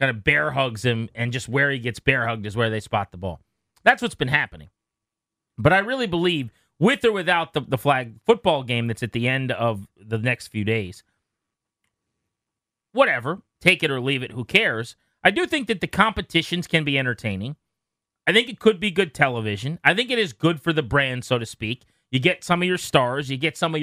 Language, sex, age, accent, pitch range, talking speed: English, male, 30-49, American, 125-170 Hz, 220 wpm